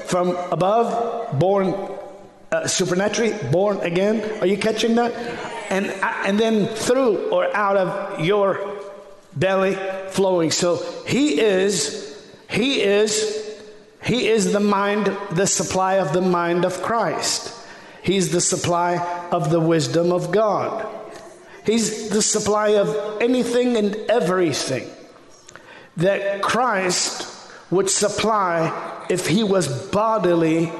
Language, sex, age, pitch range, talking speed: English, male, 50-69, 185-220 Hz, 115 wpm